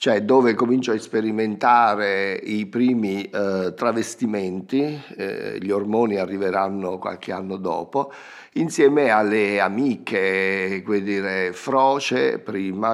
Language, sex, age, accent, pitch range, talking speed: Italian, male, 50-69, native, 100-130 Hz, 105 wpm